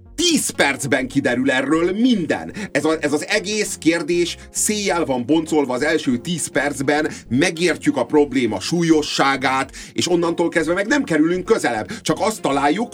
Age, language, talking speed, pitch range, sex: 30-49, Hungarian, 150 wpm, 135-190 Hz, male